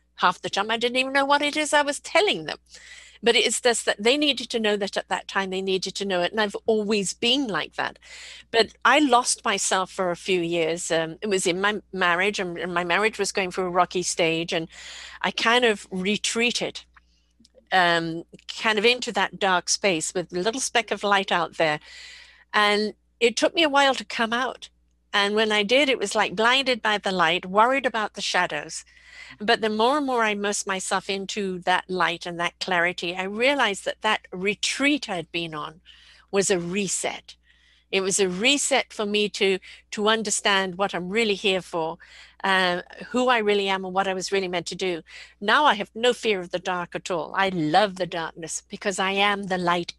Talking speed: 210 wpm